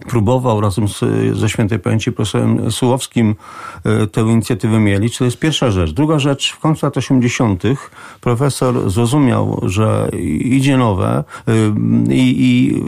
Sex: male